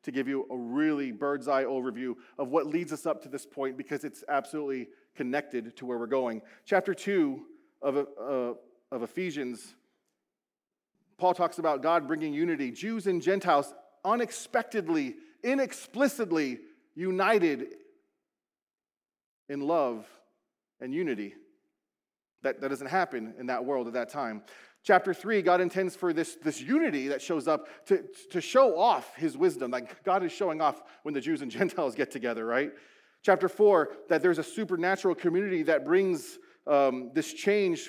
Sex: male